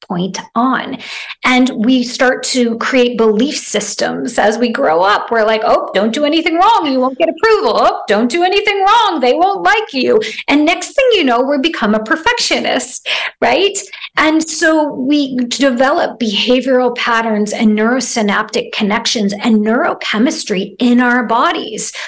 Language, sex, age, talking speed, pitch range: English, female, 40-59, 155 wpm, 230-310 Hz